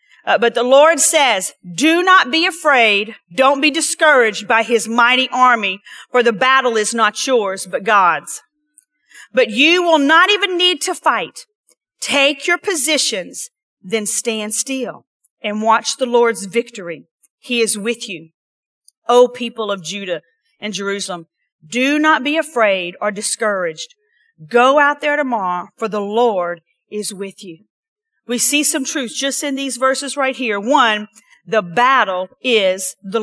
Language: English